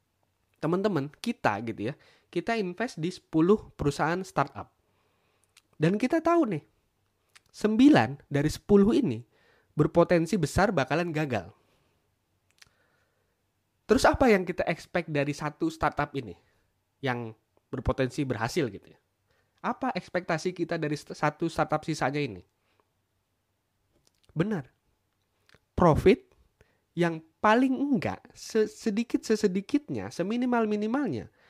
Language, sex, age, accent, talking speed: Indonesian, male, 20-39, native, 100 wpm